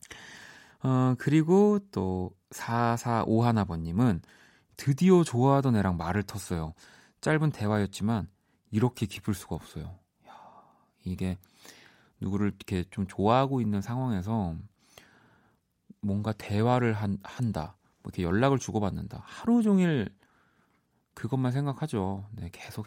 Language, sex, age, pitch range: Korean, male, 30-49, 95-125 Hz